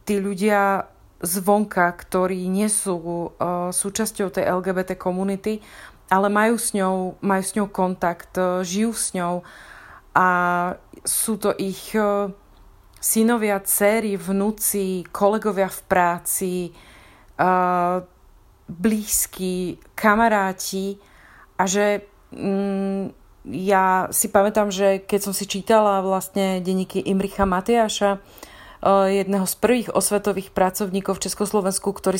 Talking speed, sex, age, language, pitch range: 110 wpm, female, 30-49, Slovak, 185-205 Hz